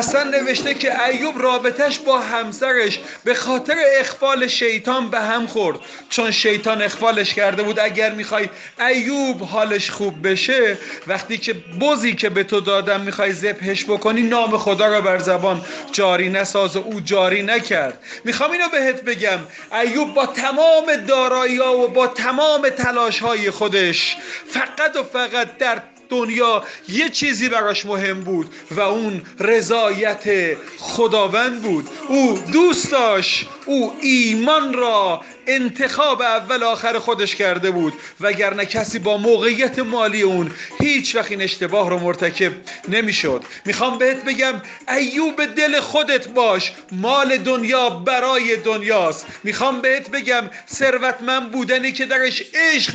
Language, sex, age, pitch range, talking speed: Persian, male, 30-49, 210-265 Hz, 135 wpm